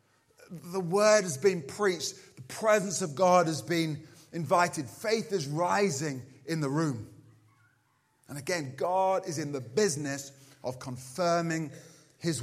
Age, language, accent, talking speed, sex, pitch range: 30-49, English, British, 135 wpm, male, 125-170 Hz